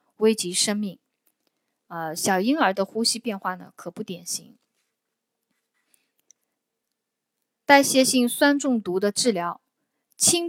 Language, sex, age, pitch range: Chinese, female, 20-39, 180-235 Hz